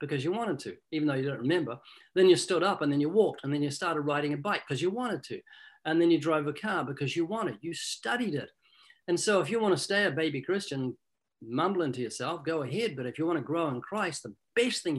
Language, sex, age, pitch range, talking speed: English, male, 50-69, 150-215 Hz, 265 wpm